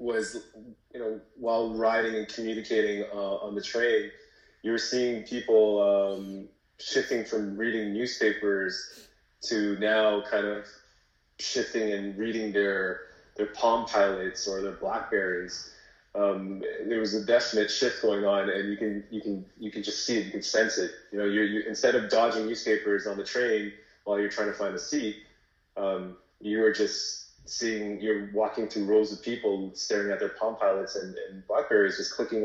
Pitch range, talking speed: 100-115 Hz, 175 wpm